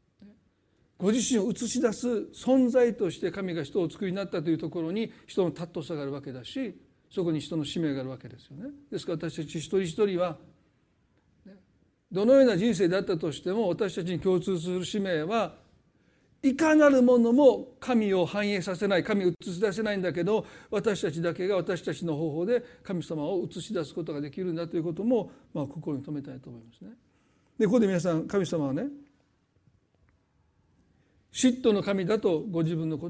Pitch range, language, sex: 165-220 Hz, Japanese, male